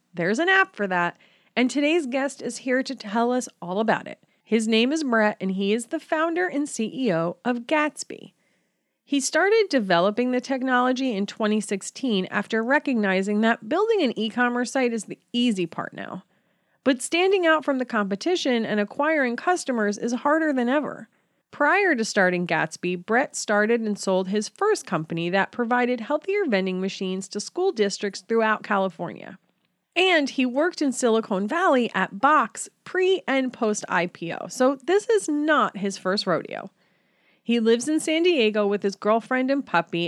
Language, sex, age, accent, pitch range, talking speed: English, female, 30-49, American, 200-280 Hz, 165 wpm